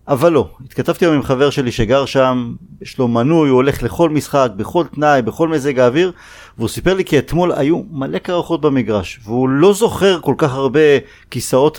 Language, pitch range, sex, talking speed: Hebrew, 120-165 Hz, male, 190 wpm